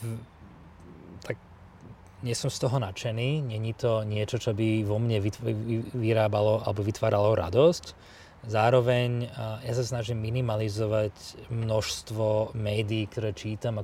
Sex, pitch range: male, 110-125 Hz